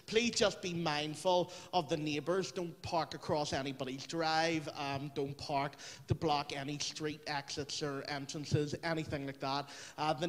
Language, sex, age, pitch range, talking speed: English, male, 30-49, 150-180 Hz, 155 wpm